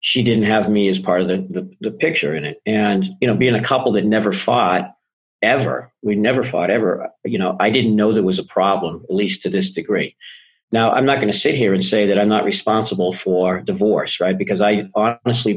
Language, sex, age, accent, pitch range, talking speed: English, male, 50-69, American, 100-125 Hz, 230 wpm